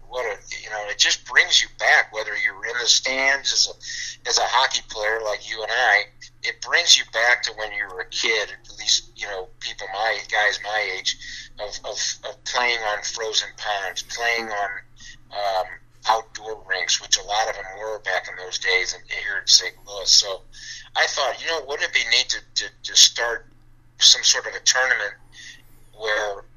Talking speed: 200 wpm